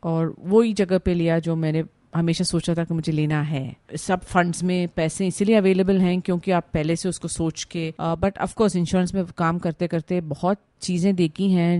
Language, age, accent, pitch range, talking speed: Hindi, 40-59, native, 150-180 Hz, 205 wpm